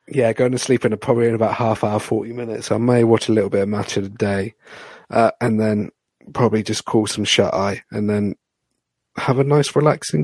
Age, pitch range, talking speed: 40-59, 105-135 Hz, 230 wpm